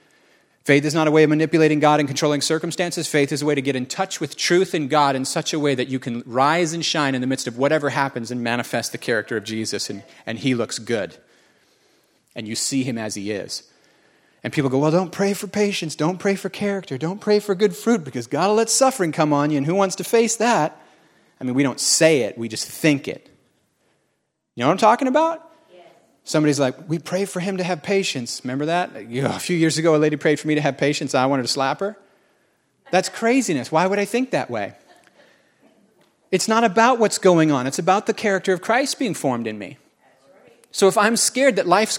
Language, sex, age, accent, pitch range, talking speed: English, male, 30-49, American, 140-195 Hz, 235 wpm